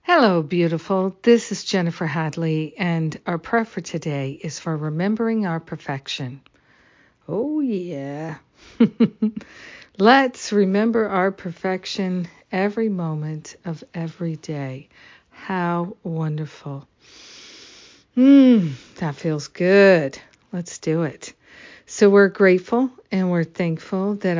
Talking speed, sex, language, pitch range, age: 105 wpm, female, English, 160-195 Hz, 50-69